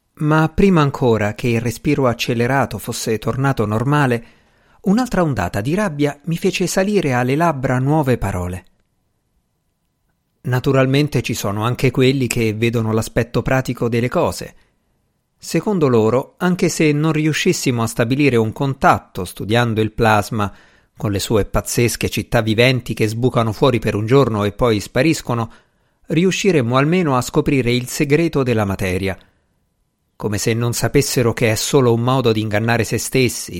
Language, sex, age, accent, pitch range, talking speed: Italian, male, 50-69, native, 110-145 Hz, 145 wpm